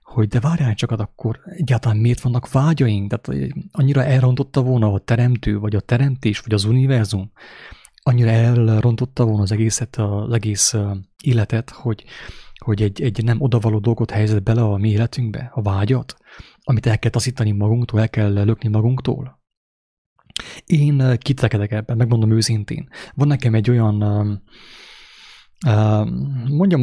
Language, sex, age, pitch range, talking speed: English, male, 30-49, 105-125 Hz, 140 wpm